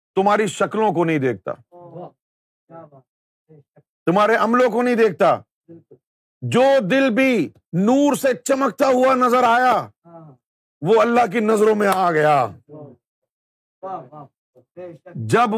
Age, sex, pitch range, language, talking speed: 50-69, male, 155-225 Hz, Urdu, 105 wpm